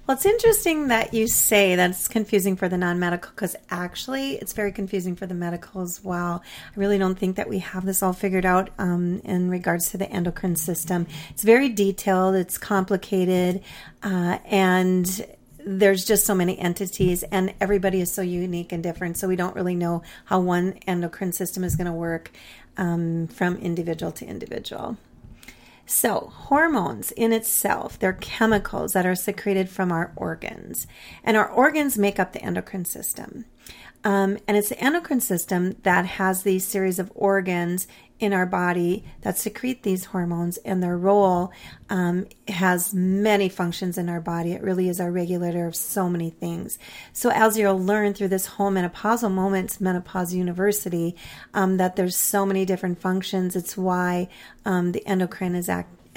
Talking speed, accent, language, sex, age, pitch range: 165 wpm, American, English, female, 40-59, 180-200 Hz